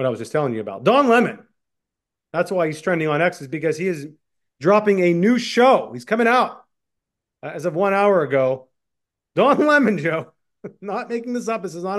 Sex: male